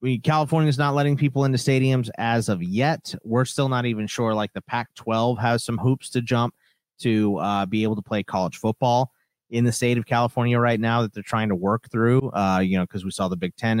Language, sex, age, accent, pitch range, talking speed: English, male, 30-49, American, 100-130 Hz, 240 wpm